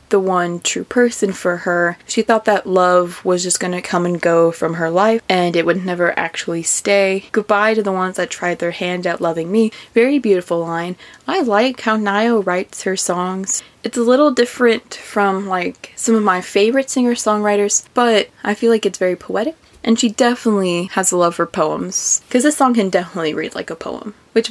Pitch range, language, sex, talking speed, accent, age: 180-235 Hz, English, female, 200 wpm, American, 20-39